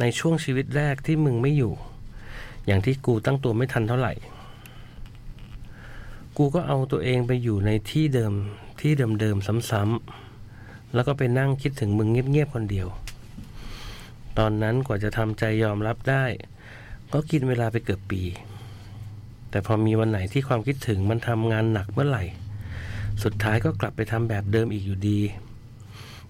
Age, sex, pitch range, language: 60-79, male, 105-125 Hz, Thai